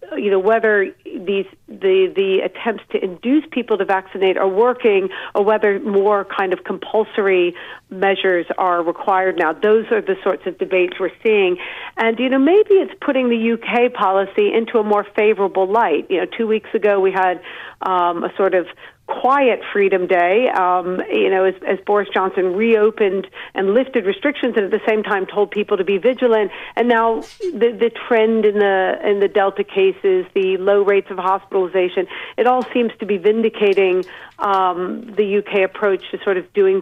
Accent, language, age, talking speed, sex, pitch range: American, English, 50-69, 180 wpm, female, 185-225 Hz